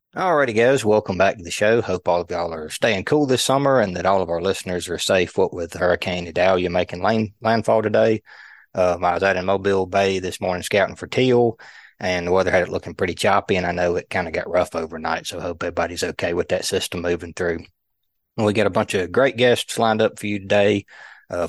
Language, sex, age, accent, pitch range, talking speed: English, male, 20-39, American, 90-105 Hz, 235 wpm